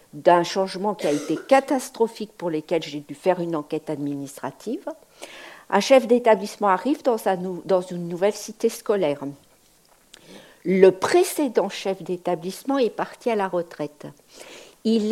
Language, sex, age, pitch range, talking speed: French, female, 60-79, 180-280 Hz, 130 wpm